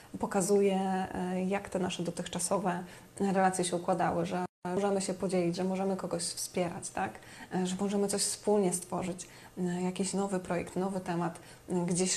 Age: 20-39